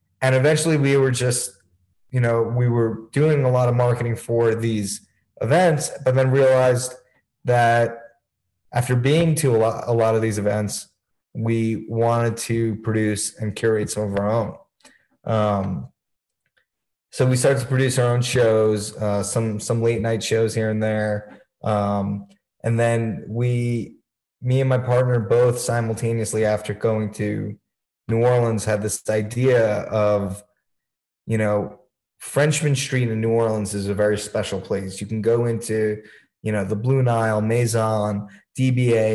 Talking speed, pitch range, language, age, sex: 155 wpm, 110-125 Hz, English, 20-39, male